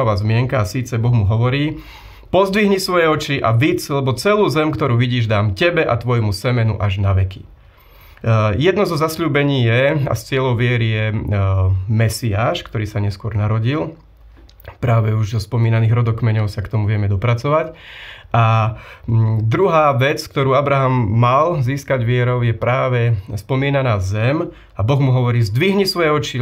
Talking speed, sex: 150 wpm, male